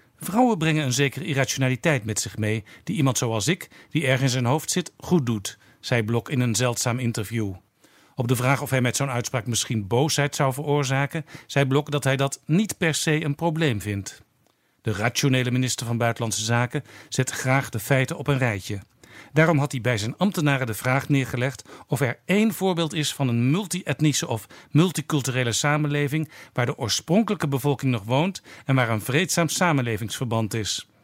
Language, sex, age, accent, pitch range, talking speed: Dutch, male, 50-69, Dutch, 120-150 Hz, 180 wpm